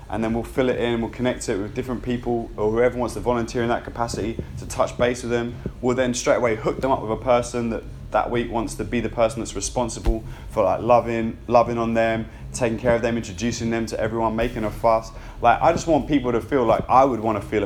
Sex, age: male, 20-39